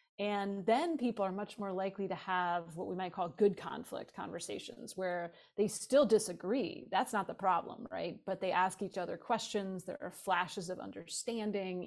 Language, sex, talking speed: English, female, 180 wpm